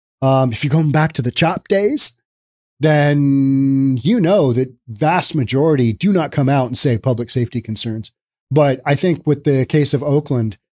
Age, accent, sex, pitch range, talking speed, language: 40-59, American, male, 125-185 Hz, 180 wpm, English